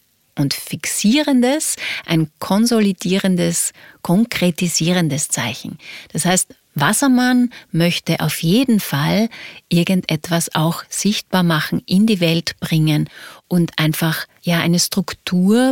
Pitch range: 165-210 Hz